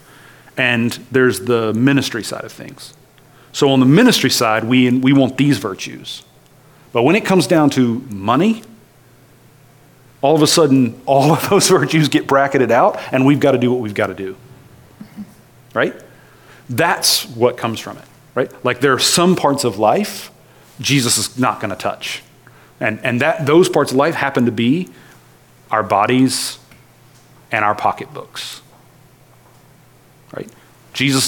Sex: male